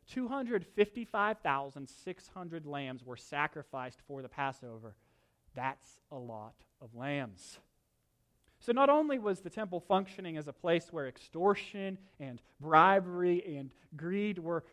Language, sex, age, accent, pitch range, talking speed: English, male, 30-49, American, 140-195 Hz, 120 wpm